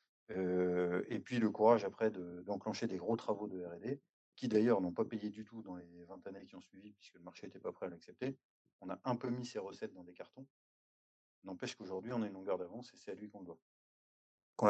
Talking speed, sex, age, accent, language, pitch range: 240 wpm, male, 30-49, French, French, 95-115 Hz